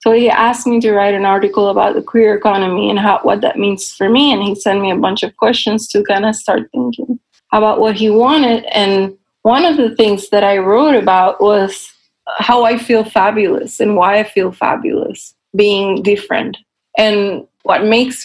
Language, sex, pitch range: English, female, 200-240 Hz